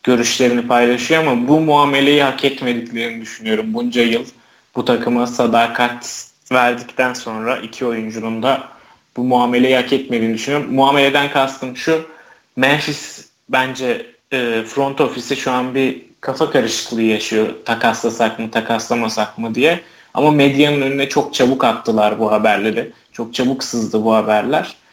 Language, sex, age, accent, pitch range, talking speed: Turkish, male, 30-49, native, 115-140 Hz, 130 wpm